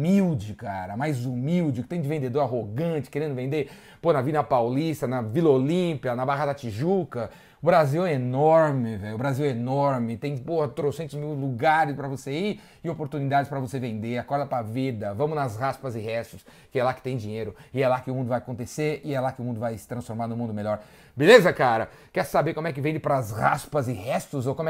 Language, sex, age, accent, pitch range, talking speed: Portuguese, male, 30-49, Brazilian, 130-160 Hz, 230 wpm